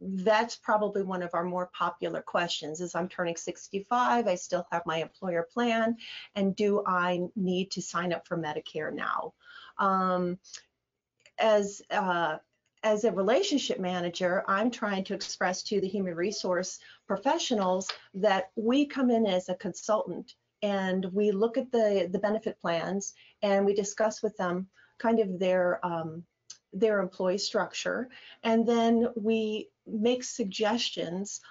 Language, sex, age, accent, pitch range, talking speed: English, female, 40-59, American, 185-225 Hz, 145 wpm